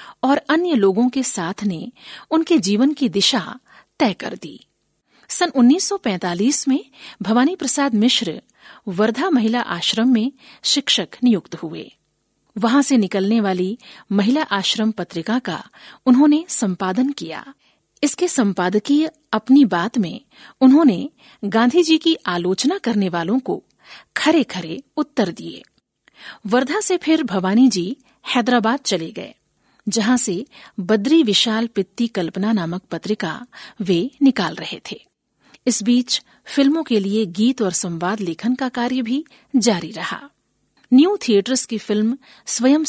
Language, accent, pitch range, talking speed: Hindi, native, 205-275 Hz, 130 wpm